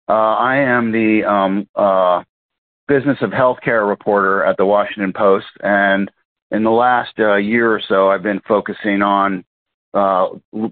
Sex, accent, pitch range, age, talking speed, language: male, American, 95-110 Hz, 50-69, 160 wpm, English